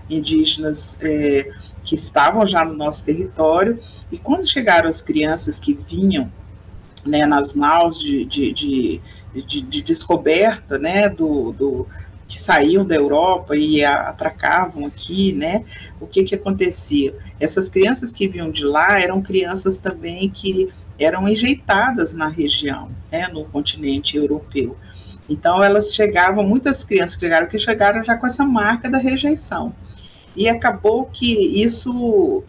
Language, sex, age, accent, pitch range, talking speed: Portuguese, female, 40-59, Brazilian, 150-215 Hz, 130 wpm